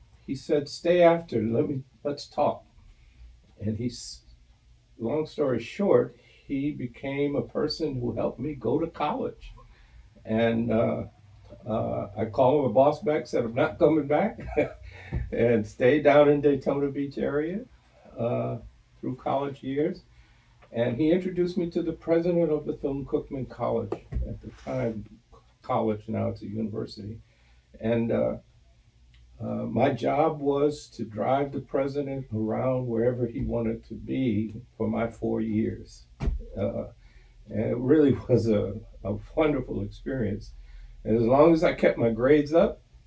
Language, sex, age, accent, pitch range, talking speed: English, male, 60-79, American, 105-140 Hz, 150 wpm